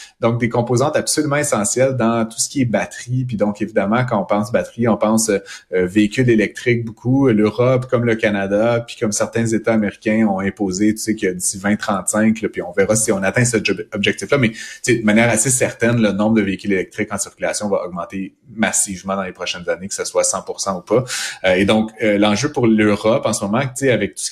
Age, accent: 30-49, Canadian